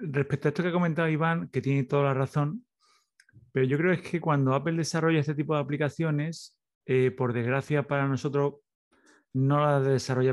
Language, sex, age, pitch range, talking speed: Spanish, male, 30-49, 130-160 Hz, 185 wpm